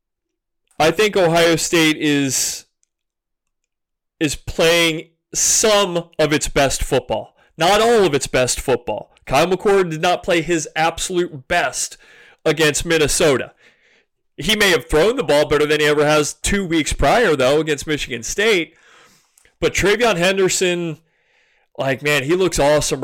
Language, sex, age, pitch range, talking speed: English, male, 30-49, 145-175 Hz, 140 wpm